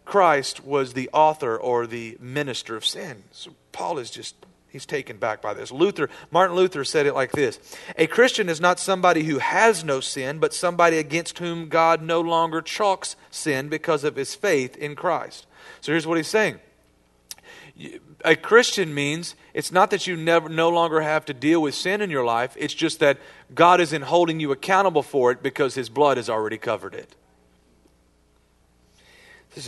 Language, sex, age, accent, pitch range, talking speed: English, male, 40-59, American, 140-190 Hz, 180 wpm